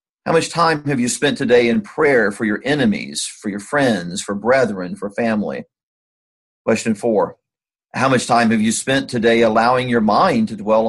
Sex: male